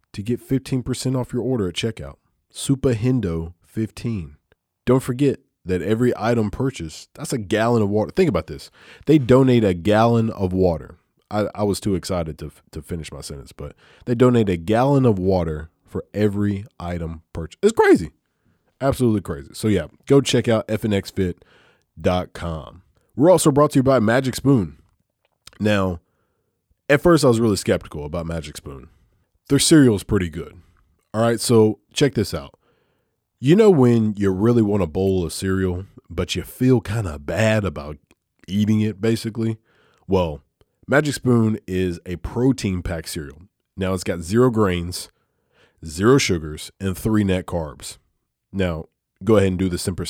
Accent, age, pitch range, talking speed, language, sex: American, 20-39, 85-115 Hz, 165 wpm, English, male